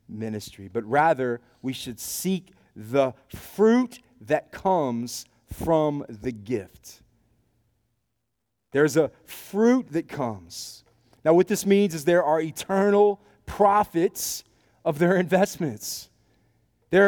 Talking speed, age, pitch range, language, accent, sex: 110 wpm, 30-49, 115-180 Hz, English, American, male